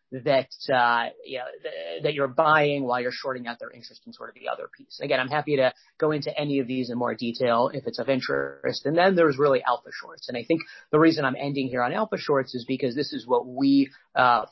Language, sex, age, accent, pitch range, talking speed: English, male, 40-59, American, 125-150 Hz, 250 wpm